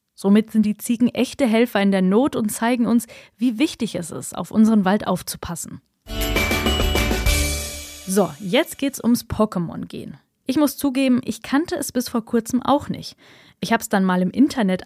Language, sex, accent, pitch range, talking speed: German, female, German, 185-245 Hz, 180 wpm